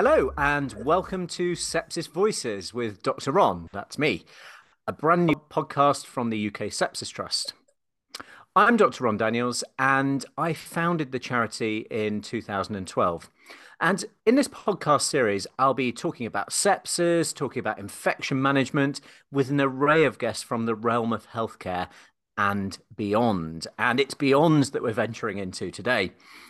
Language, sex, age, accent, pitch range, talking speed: English, male, 30-49, British, 110-155 Hz, 145 wpm